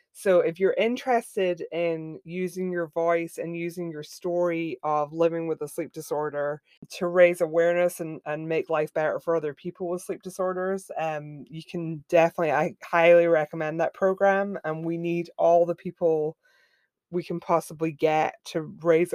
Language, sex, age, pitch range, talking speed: English, female, 20-39, 160-205 Hz, 165 wpm